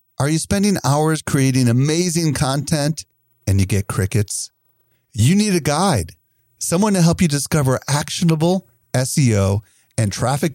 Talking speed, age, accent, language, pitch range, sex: 135 wpm, 40-59, American, English, 105-145 Hz, male